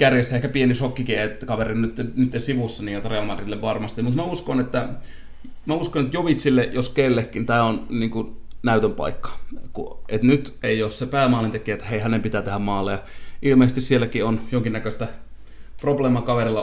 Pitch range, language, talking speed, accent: 100-120 Hz, Finnish, 160 wpm, native